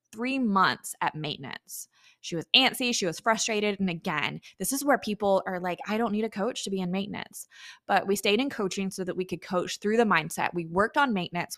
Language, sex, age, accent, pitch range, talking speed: English, female, 20-39, American, 185-225 Hz, 230 wpm